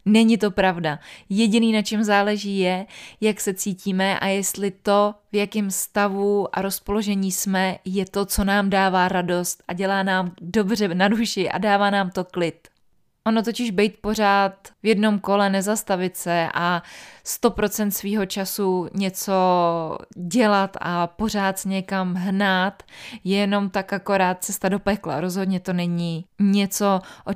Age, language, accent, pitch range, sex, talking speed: 20-39, Czech, native, 185-205 Hz, female, 150 wpm